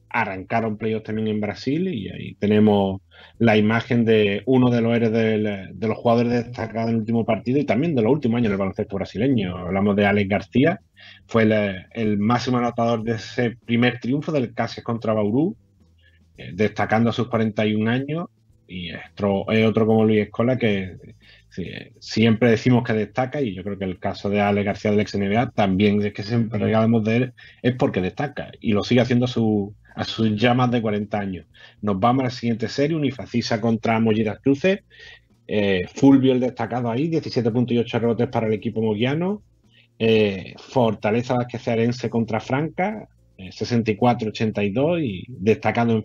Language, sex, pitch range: Spanish, male, 105-120 Hz